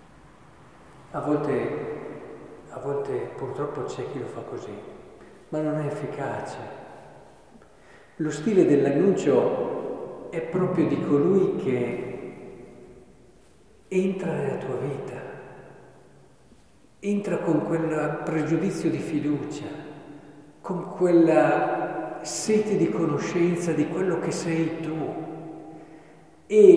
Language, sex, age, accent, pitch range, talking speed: Italian, male, 50-69, native, 155-235 Hz, 95 wpm